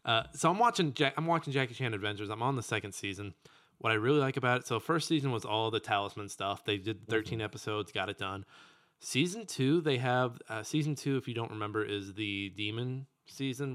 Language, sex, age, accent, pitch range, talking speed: English, male, 20-39, American, 100-135 Hz, 225 wpm